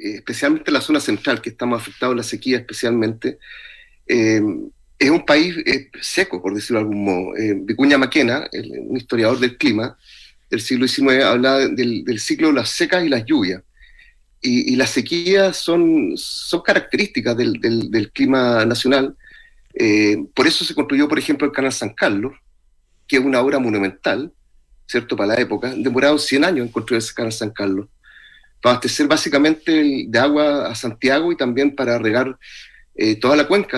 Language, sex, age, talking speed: Spanish, male, 40-59, 175 wpm